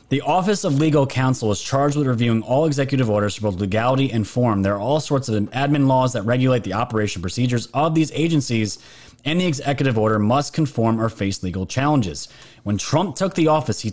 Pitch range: 110-145 Hz